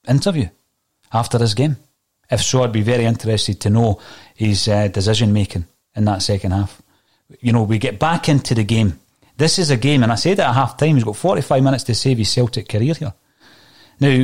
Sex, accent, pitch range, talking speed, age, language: male, British, 105-130 Hz, 210 wpm, 30-49, English